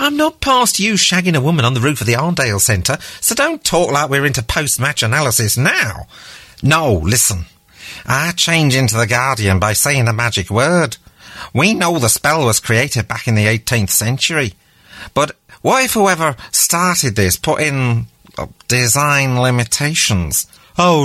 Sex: male